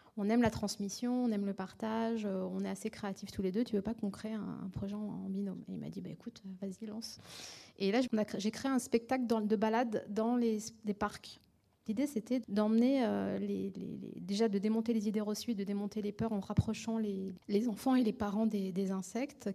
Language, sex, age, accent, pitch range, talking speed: French, female, 20-39, French, 210-250 Hz, 205 wpm